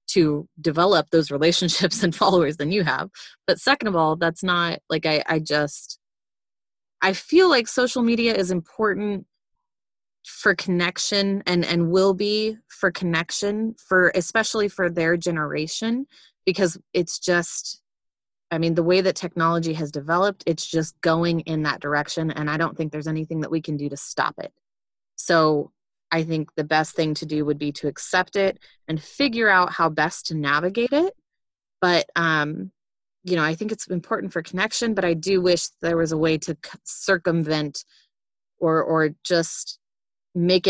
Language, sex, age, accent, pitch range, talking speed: English, female, 20-39, American, 155-190 Hz, 170 wpm